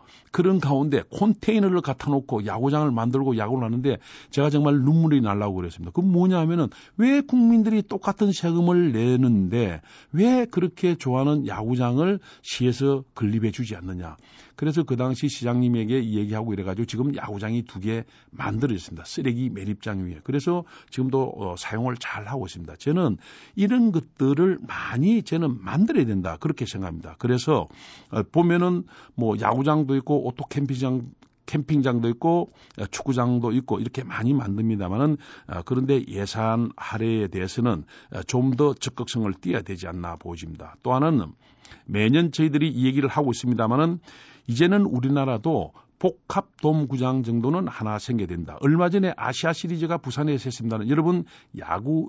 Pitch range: 110-155 Hz